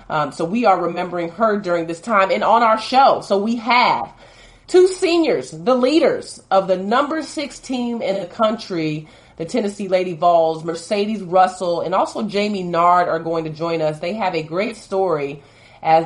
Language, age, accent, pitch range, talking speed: English, 30-49, American, 165-220 Hz, 185 wpm